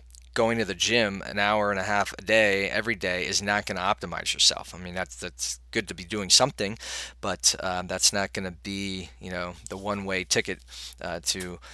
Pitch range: 90-105 Hz